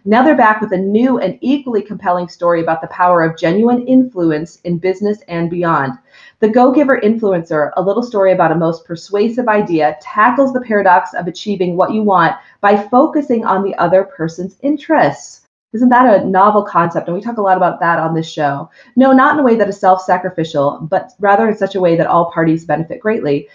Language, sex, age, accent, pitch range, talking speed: English, female, 30-49, American, 170-220 Hz, 205 wpm